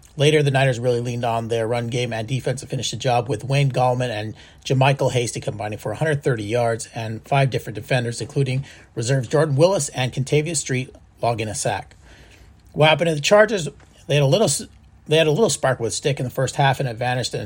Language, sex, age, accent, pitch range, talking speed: English, male, 30-49, American, 115-140 Hz, 215 wpm